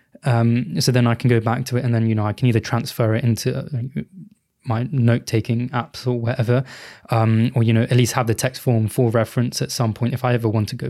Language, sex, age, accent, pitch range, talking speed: English, male, 20-39, British, 115-135 Hz, 250 wpm